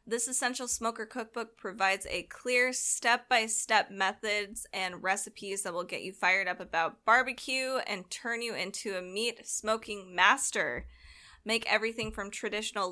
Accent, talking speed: American, 140 wpm